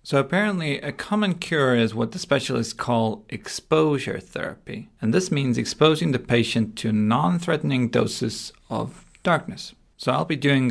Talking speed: 150 wpm